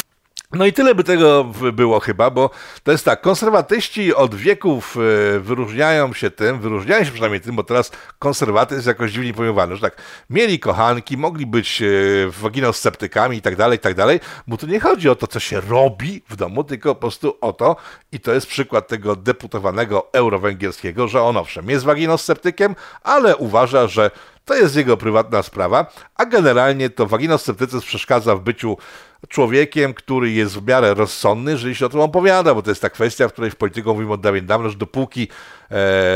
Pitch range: 110-140 Hz